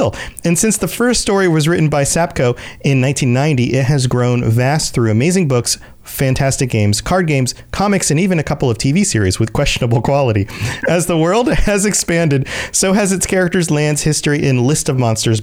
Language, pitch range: English, 125-180 Hz